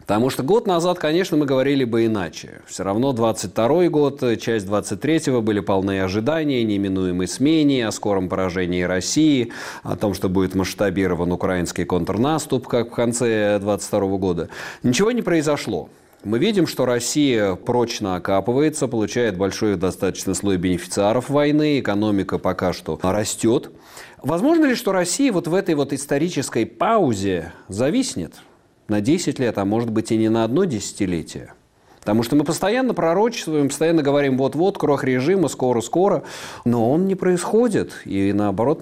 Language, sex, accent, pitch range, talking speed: Russian, male, native, 95-140 Hz, 145 wpm